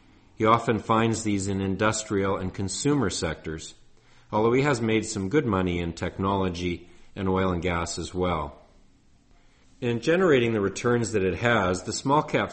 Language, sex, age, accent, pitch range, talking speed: English, male, 50-69, American, 95-115 Hz, 165 wpm